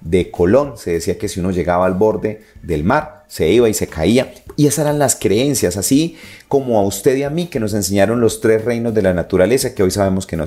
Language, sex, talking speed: Spanish, male, 245 wpm